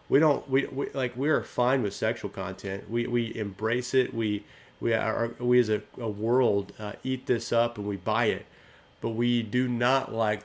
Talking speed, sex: 205 wpm, male